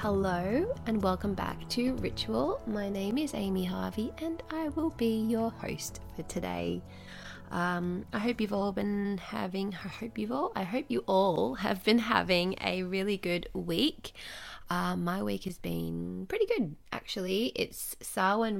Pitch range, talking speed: 175-230 Hz, 165 wpm